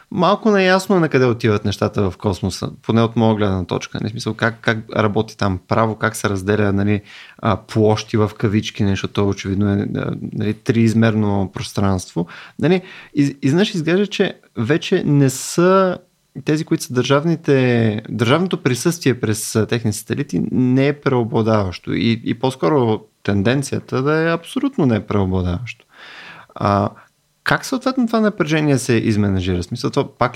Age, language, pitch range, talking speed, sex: 30-49, Bulgarian, 110-145 Hz, 155 wpm, male